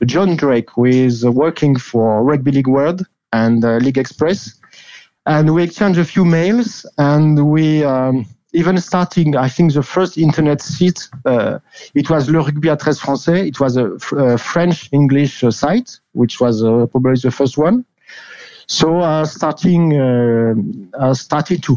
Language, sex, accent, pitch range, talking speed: English, male, French, 130-160 Hz, 160 wpm